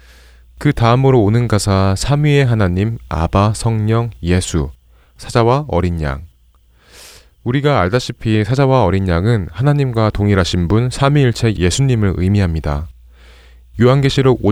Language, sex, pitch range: Korean, male, 85-115 Hz